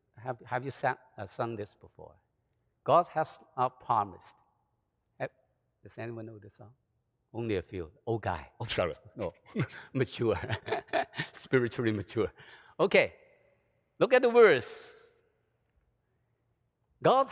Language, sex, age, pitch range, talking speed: English, male, 60-79, 115-140 Hz, 120 wpm